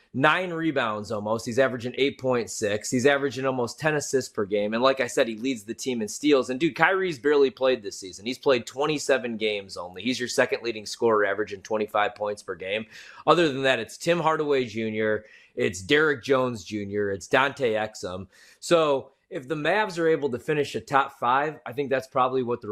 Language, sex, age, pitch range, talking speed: English, male, 20-39, 115-145 Hz, 200 wpm